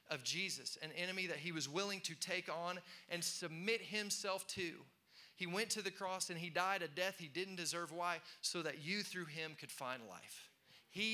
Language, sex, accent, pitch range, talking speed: English, male, American, 145-180 Hz, 205 wpm